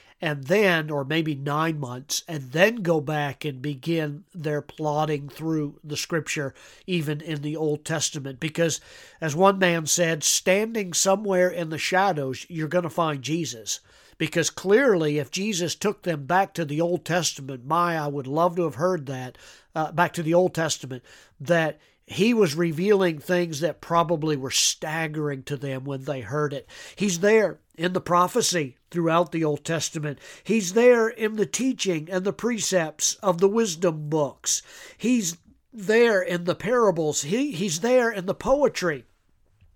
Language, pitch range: English, 155-200 Hz